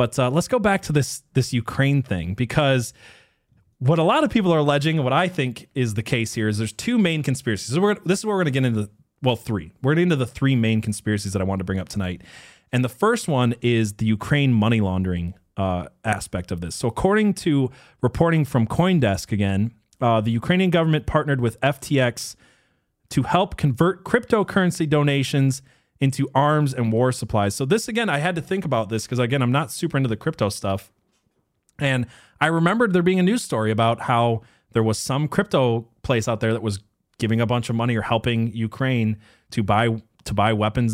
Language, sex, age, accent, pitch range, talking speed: English, male, 20-39, American, 110-145 Hz, 215 wpm